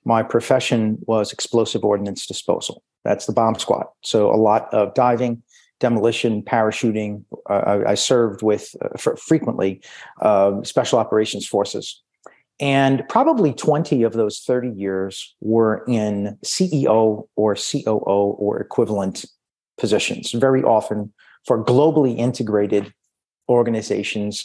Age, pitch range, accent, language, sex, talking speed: 40-59, 105-120 Hz, American, English, male, 120 wpm